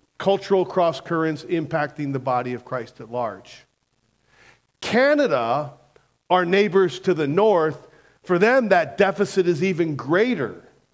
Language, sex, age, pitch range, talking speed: English, male, 40-59, 150-205 Hz, 125 wpm